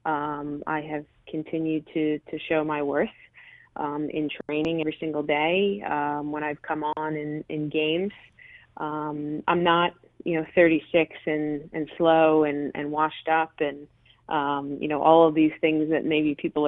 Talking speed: 170 wpm